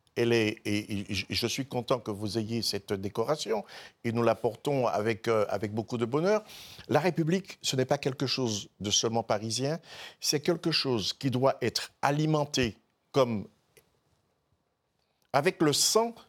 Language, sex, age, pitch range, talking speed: French, male, 50-69, 115-170 Hz, 160 wpm